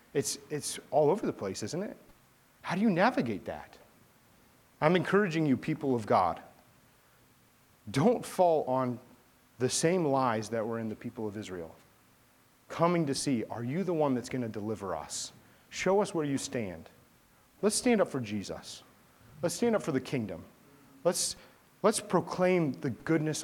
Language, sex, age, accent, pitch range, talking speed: English, male, 30-49, American, 120-160 Hz, 165 wpm